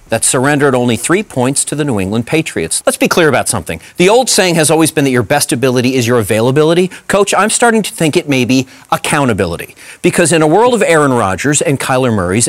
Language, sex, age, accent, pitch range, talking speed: English, male, 40-59, American, 135-185 Hz, 225 wpm